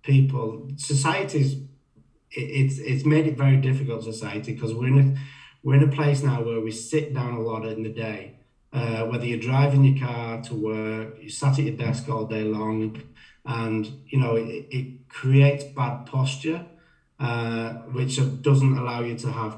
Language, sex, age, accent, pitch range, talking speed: English, male, 30-49, British, 115-140 Hz, 175 wpm